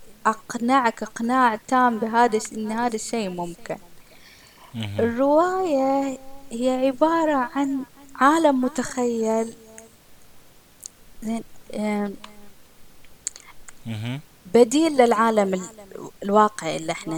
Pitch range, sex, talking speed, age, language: 200-255 Hz, female, 60 wpm, 20-39, Arabic